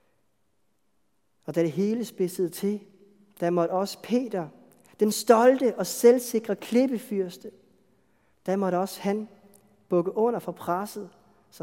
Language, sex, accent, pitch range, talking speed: Danish, male, native, 170-215 Hz, 125 wpm